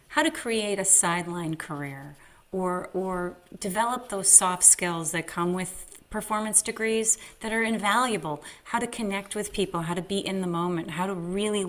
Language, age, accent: English, 30-49, American